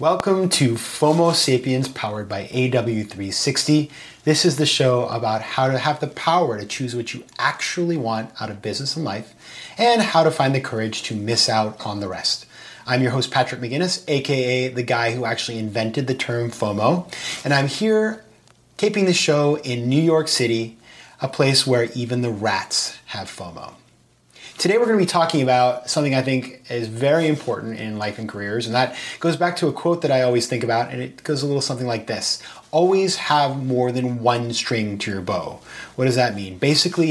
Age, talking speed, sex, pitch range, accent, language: 30-49, 195 wpm, male, 115-145 Hz, American, English